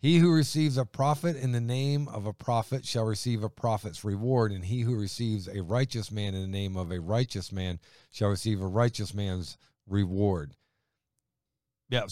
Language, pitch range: English, 105-130 Hz